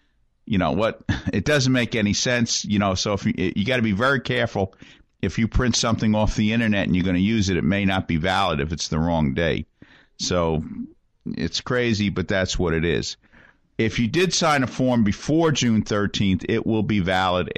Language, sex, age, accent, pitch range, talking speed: English, male, 50-69, American, 85-110 Hz, 215 wpm